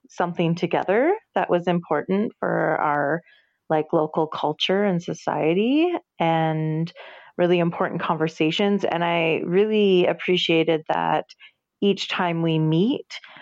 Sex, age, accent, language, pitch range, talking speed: female, 30-49, American, English, 160-190 Hz, 110 wpm